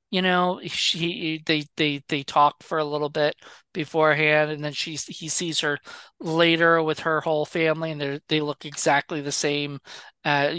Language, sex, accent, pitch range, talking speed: English, male, American, 140-165 Hz, 175 wpm